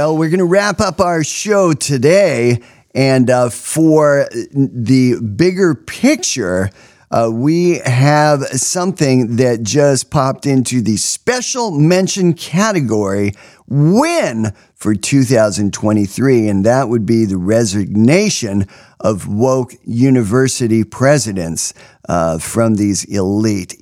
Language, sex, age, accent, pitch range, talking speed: English, male, 50-69, American, 105-155 Hz, 110 wpm